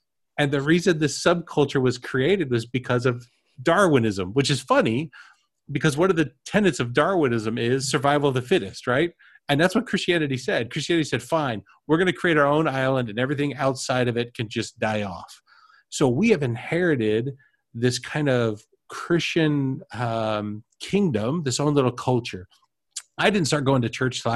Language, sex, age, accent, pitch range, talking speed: English, male, 40-59, American, 110-145 Hz, 175 wpm